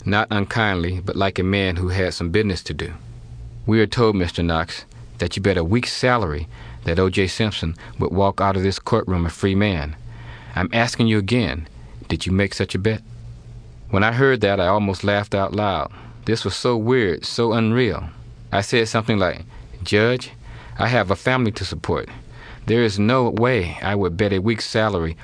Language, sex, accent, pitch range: English, male, American, 90-115 Hz